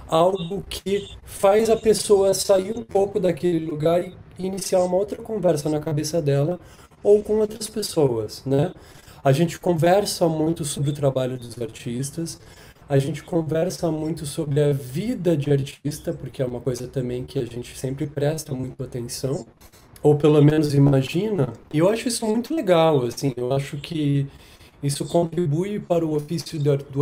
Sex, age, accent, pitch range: male, 20-39, Brazilian, 140-180 Hz